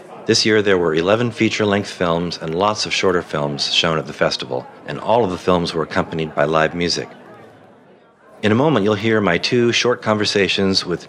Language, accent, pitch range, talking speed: English, American, 85-105 Hz, 195 wpm